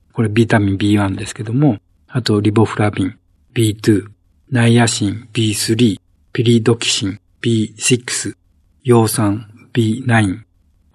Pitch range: 105-125 Hz